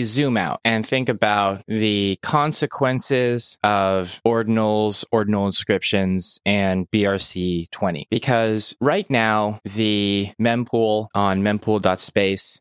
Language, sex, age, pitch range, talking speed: English, male, 20-39, 95-115 Hz, 95 wpm